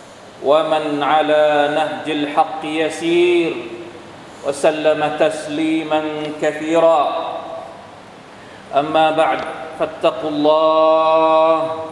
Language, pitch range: Thai, 155-165 Hz